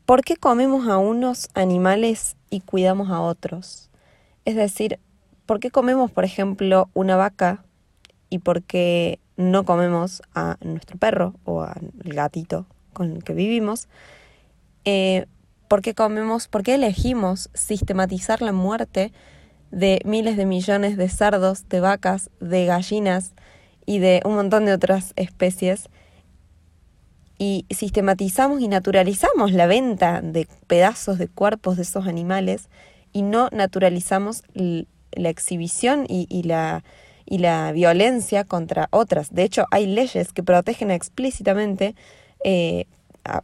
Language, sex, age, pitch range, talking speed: Spanish, female, 20-39, 175-210 Hz, 130 wpm